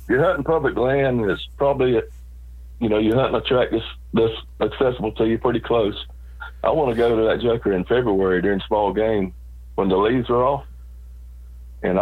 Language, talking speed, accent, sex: English, 190 wpm, American, male